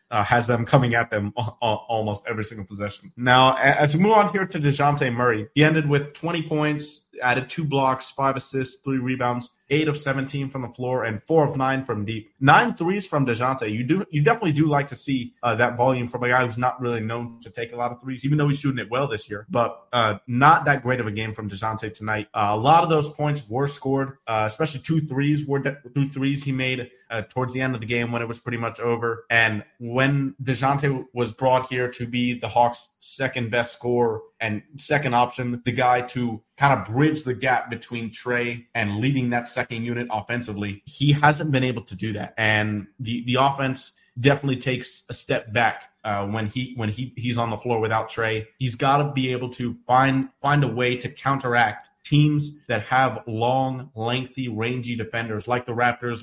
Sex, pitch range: male, 115-135 Hz